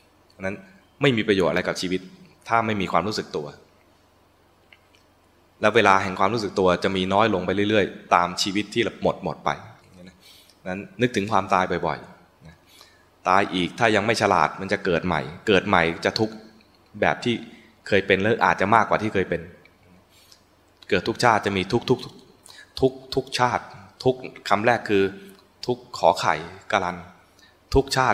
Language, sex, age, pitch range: English, male, 20-39, 90-115 Hz